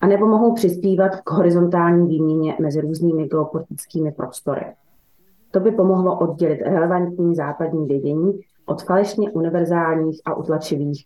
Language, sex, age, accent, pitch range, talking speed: English, female, 30-49, Czech, 155-180 Hz, 125 wpm